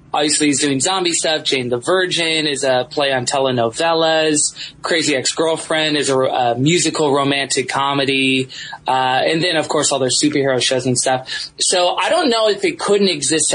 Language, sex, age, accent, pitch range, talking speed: English, male, 20-39, American, 135-160 Hz, 175 wpm